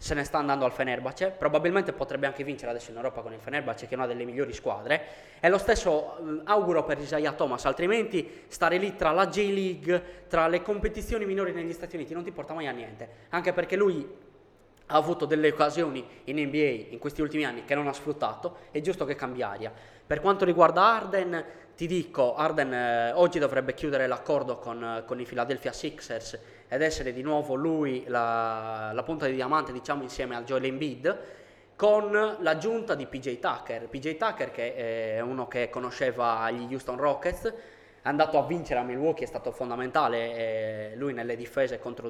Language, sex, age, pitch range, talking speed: Italian, male, 20-39, 120-170 Hz, 185 wpm